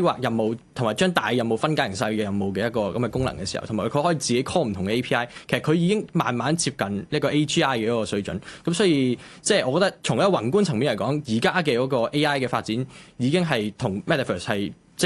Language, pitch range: Chinese, 115-155 Hz